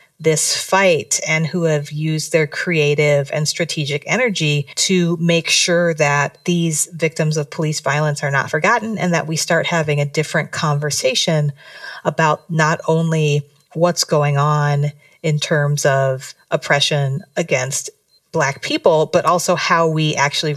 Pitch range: 145-170 Hz